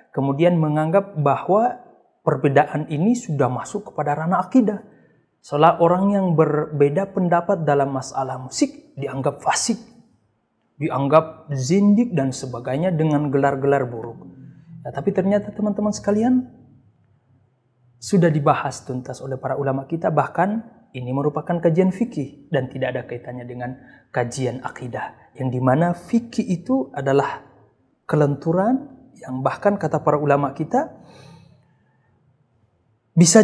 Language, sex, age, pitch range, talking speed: Indonesian, male, 30-49, 140-205 Hz, 115 wpm